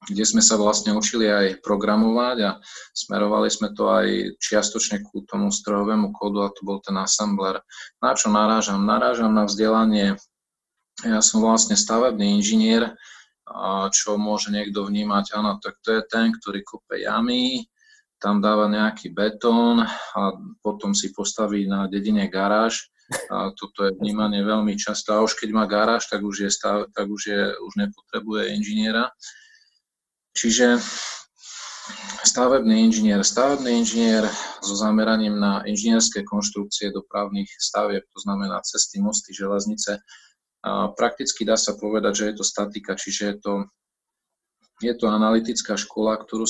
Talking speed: 140 wpm